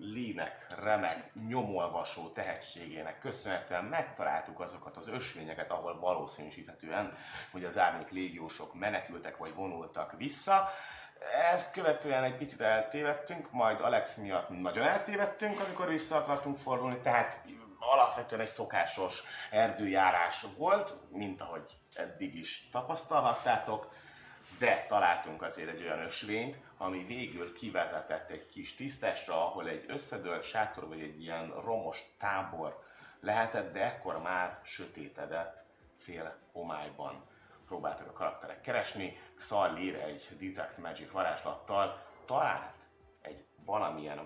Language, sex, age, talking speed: Hungarian, male, 30-49, 115 wpm